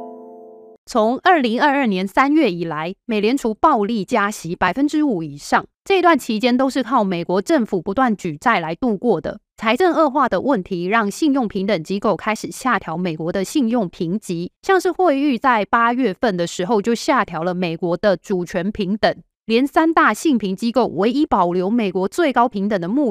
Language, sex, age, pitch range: Chinese, female, 20-39, 195-275 Hz